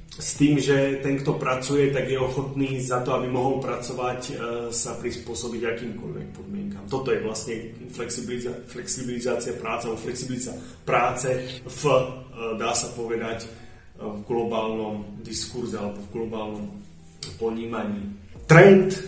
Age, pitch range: 30-49, 115-130 Hz